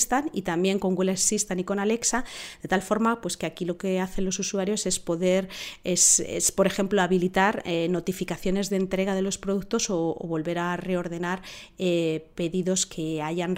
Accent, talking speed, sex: Spanish, 170 wpm, female